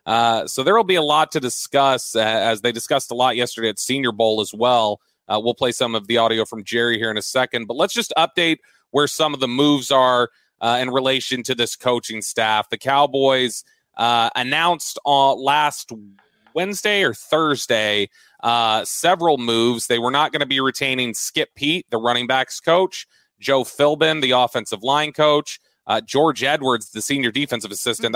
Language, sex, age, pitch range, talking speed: English, male, 30-49, 115-140 Hz, 185 wpm